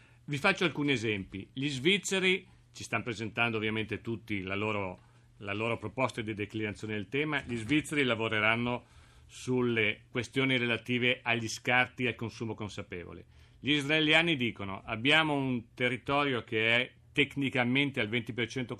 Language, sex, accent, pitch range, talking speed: Italian, male, native, 110-130 Hz, 135 wpm